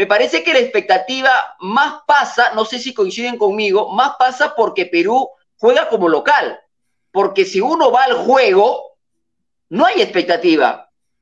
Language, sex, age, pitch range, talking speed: Spanish, male, 40-59, 240-340 Hz, 150 wpm